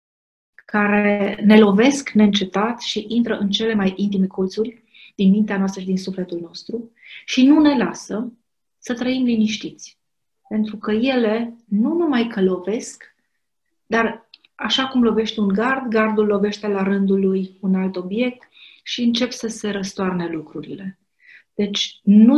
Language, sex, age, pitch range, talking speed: Romanian, female, 30-49, 195-250 Hz, 145 wpm